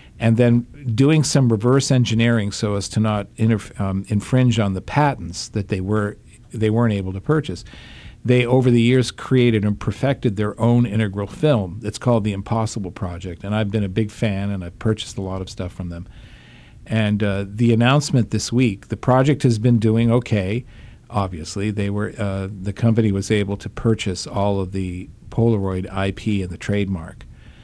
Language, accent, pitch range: English, American, 100-120 Hz